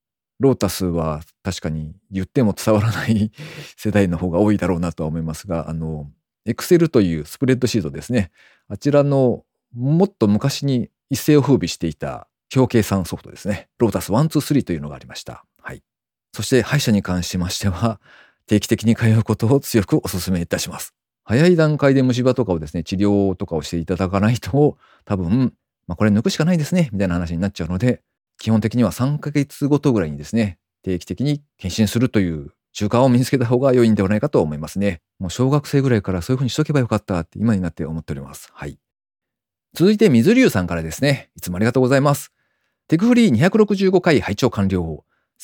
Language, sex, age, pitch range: Japanese, male, 40-59, 95-145 Hz